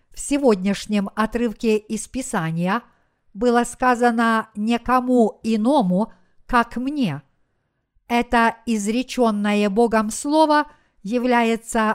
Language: Russian